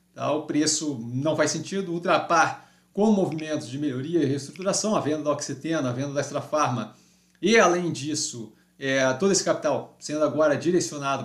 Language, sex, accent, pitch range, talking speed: Portuguese, male, Brazilian, 130-165 Hz, 170 wpm